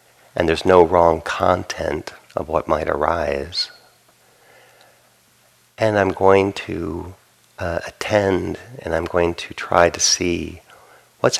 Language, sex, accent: English, male, American